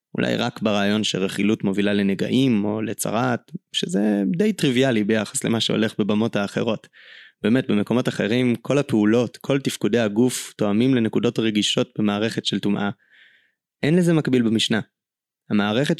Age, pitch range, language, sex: 20-39, 105-130 Hz, Hebrew, male